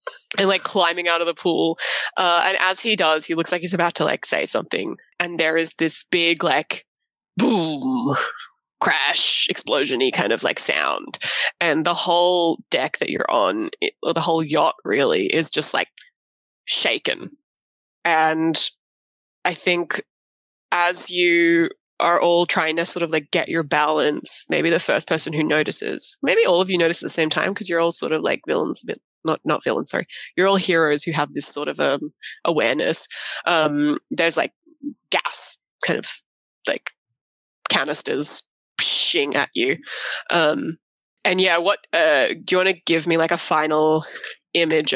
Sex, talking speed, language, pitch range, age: female, 170 wpm, English, 160-195 Hz, 20-39